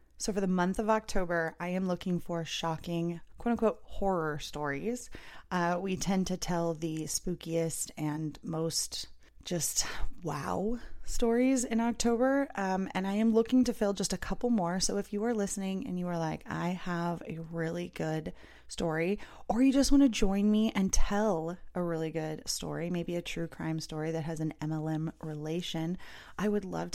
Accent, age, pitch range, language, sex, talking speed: American, 20-39, 165-200 Hz, English, female, 180 wpm